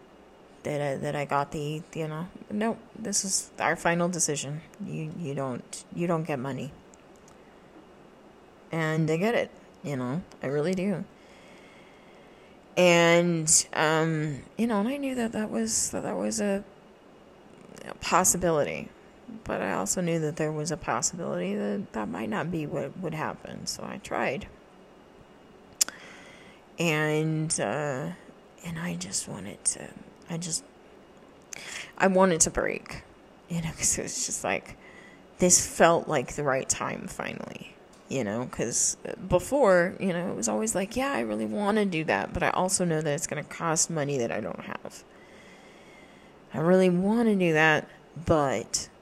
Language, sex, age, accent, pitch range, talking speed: English, female, 30-49, American, 150-185 Hz, 160 wpm